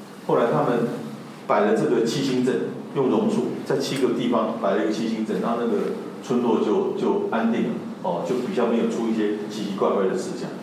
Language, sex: Chinese, male